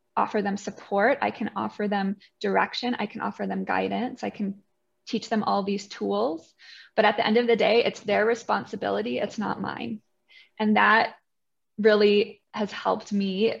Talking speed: 170 wpm